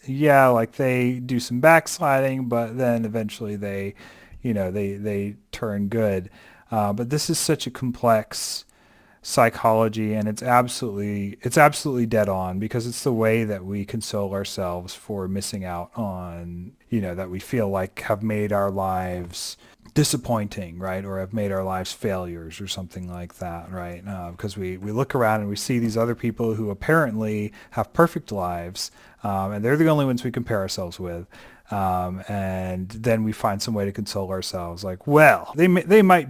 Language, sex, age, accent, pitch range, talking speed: English, male, 30-49, American, 100-150 Hz, 180 wpm